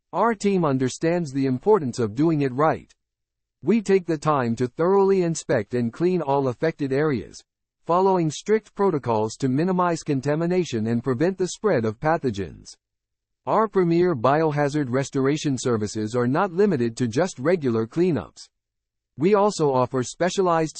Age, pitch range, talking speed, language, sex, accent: 50-69, 120-180 Hz, 140 wpm, English, male, American